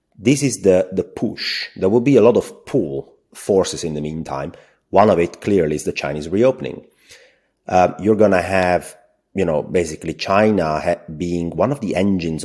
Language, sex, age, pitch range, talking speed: English, male, 30-49, 80-100 Hz, 190 wpm